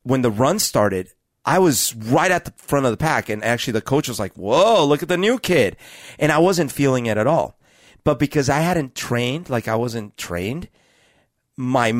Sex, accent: male, American